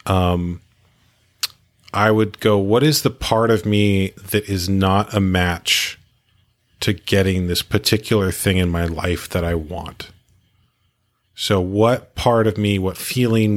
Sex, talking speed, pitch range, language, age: male, 145 wpm, 95-115 Hz, English, 30-49